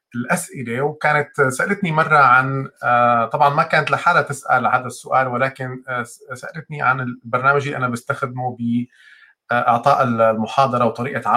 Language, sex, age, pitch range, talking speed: Arabic, male, 30-49, 125-150 Hz, 115 wpm